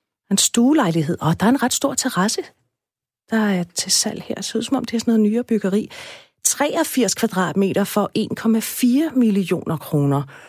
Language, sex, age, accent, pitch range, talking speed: Danish, female, 40-59, native, 155-215 Hz, 185 wpm